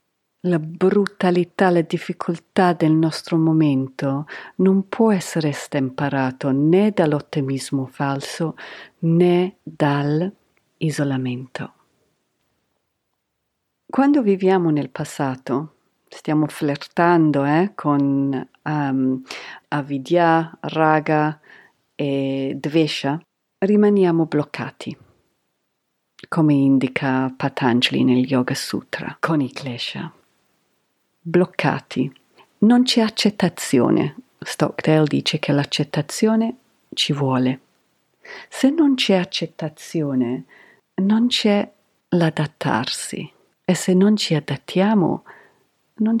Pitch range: 145-185 Hz